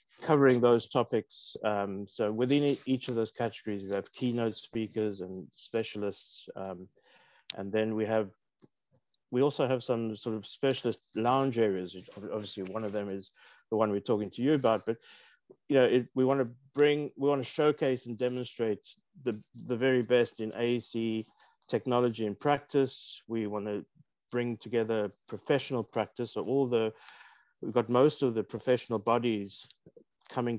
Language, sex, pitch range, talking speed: English, male, 105-125 Hz, 165 wpm